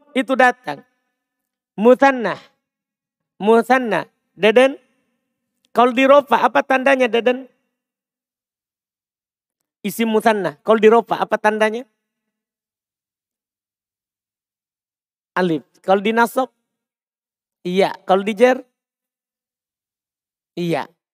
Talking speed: 55 wpm